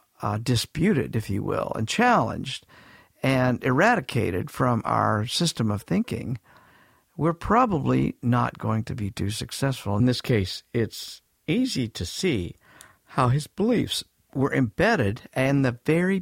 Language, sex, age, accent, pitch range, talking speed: English, male, 50-69, American, 105-135 Hz, 135 wpm